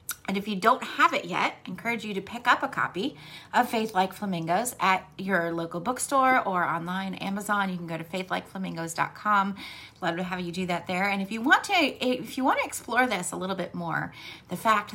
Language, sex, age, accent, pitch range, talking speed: English, female, 30-49, American, 175-225 Hz, 220 wpm